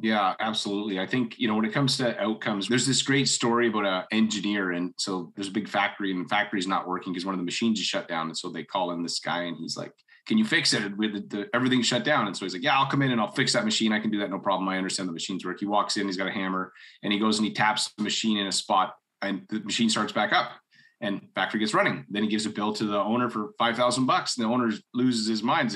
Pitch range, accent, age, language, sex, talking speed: 100-120 Hz, American, 30-49, English, male, 295 wpm